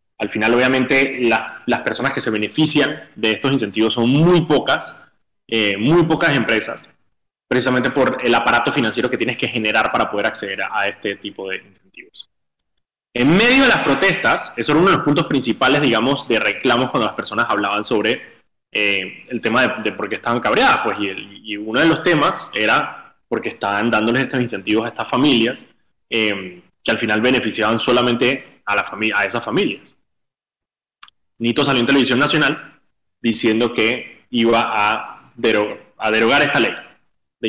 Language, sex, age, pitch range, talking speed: Spanish, male, 20-39, 110-135 Hz, 175 wpm